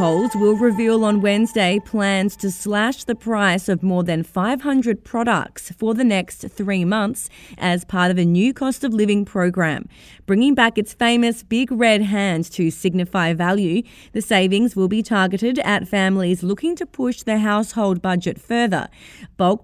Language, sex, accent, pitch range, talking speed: English, female, Australian, 180-220 Hz, 160 wpm